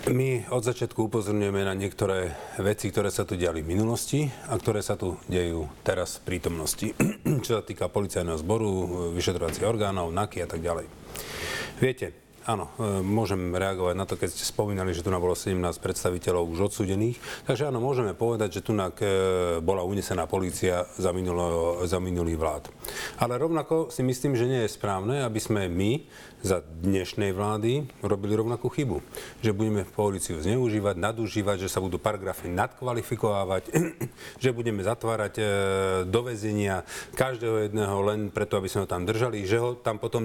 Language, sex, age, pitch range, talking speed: Slovak, male, 40-59, 95-120 Hz, 160 wpm